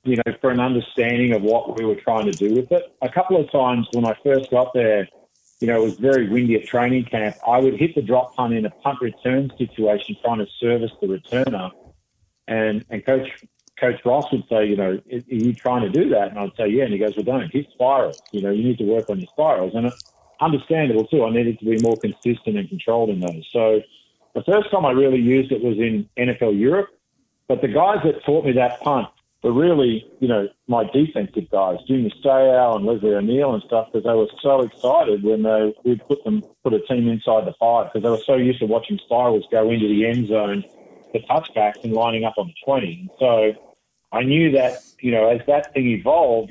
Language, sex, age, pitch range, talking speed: English, male, 50-69, 110-135 Hz, 230 wpm